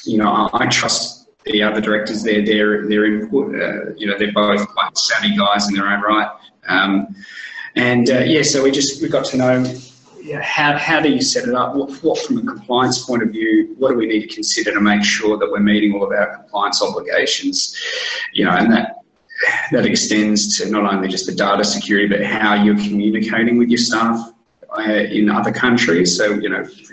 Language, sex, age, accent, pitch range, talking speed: English, male, 20-39, Australian, 105-130 Hz, 215 wpm